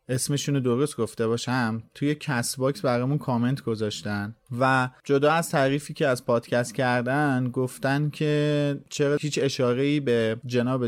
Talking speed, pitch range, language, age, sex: 145 wpm, 120-145 Hz, Persian, 30-49, male